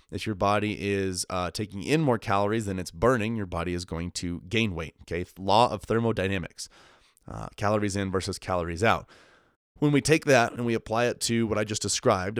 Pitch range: 95-115 Hz